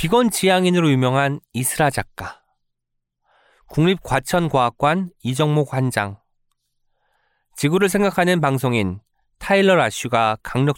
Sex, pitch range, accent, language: male, 115-170 Hz, native, Korean